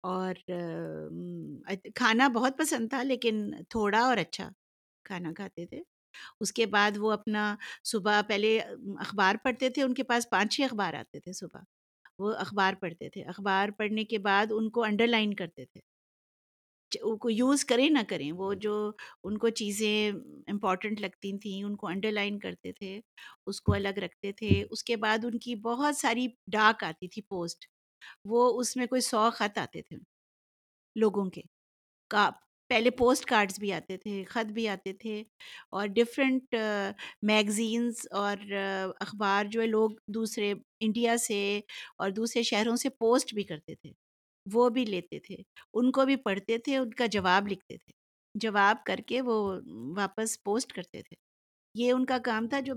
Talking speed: 165 wpm